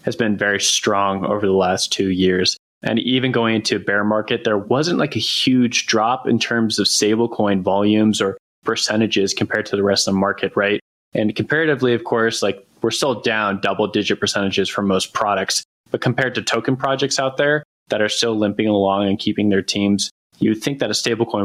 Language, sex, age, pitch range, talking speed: English, male, 20-39, 100-120 Hz, 205 wpm